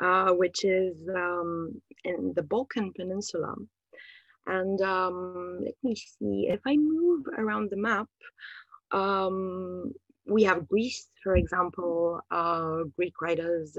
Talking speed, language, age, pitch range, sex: 120 wpm, Persian, 20-39, 170-205 Hz, female